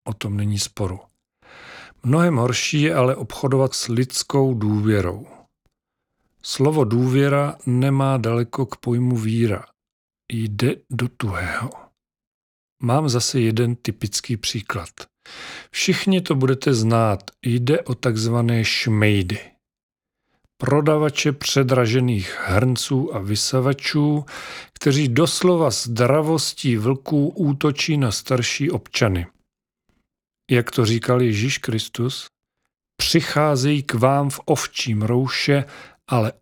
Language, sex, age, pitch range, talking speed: Czech, male, 40-59, 110-140 Hz, 100 wpm